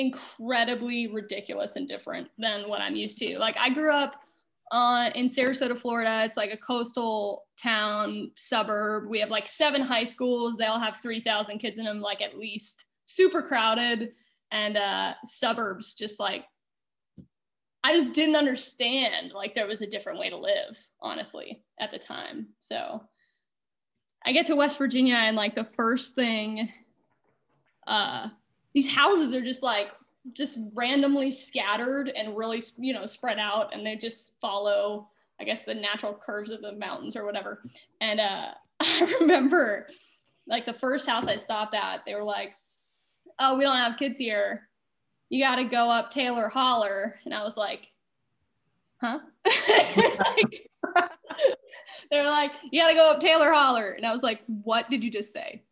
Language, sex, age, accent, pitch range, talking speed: English, female, 10-29, American, 215-285 Hz, 165 wpm